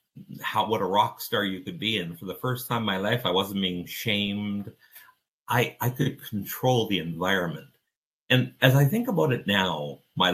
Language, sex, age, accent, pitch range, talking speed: English, male, 60-79, American, 100-135 Hz, 195 wpm